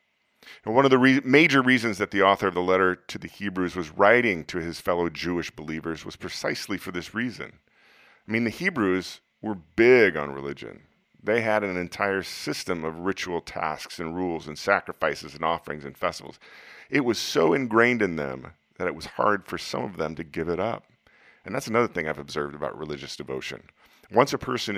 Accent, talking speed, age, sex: American, 195 wpm, 40-59, male